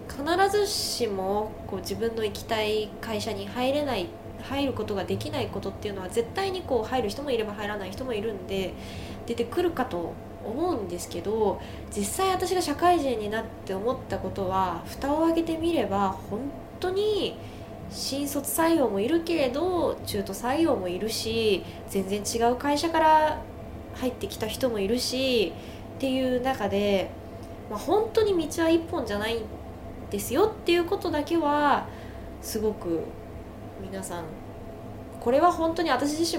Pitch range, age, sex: 200-320 Hz, 20-39, female